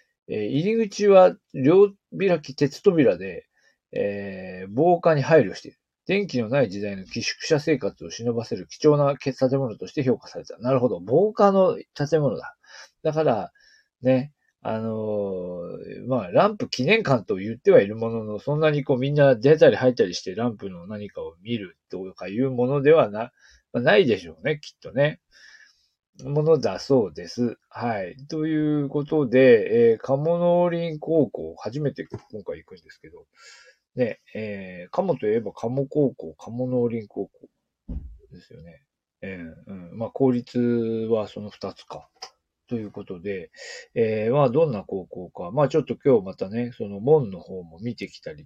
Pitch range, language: 105-155 Hz, Japanese